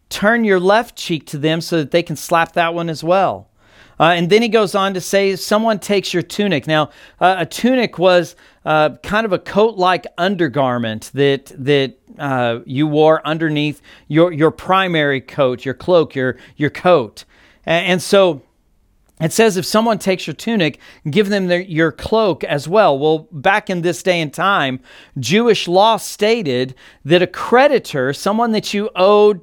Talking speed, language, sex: 175 wpm, English, male